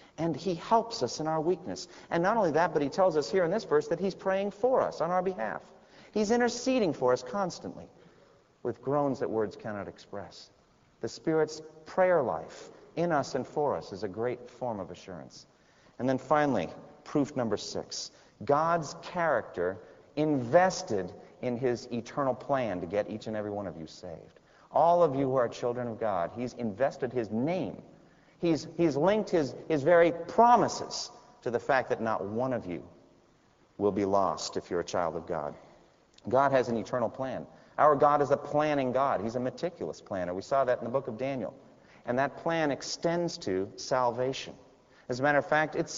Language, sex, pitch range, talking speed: English, male, 125-165 Hz, 190 wpm